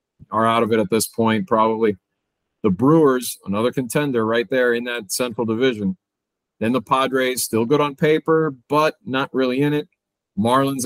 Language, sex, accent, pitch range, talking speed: English, male, American, 100-130 Hz, 170 wpm